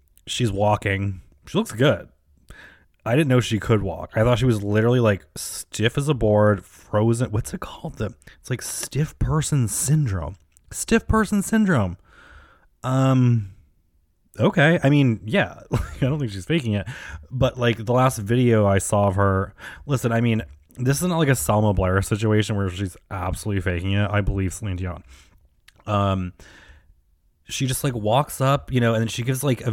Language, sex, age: English, male, 20-39